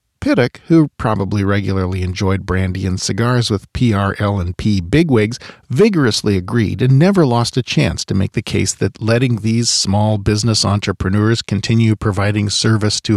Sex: male